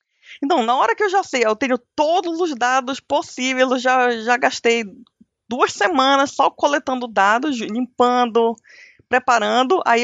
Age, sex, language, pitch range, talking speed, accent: 20-39, female, Portuguese, 210-255 Hz, 150 wpm, Brazilian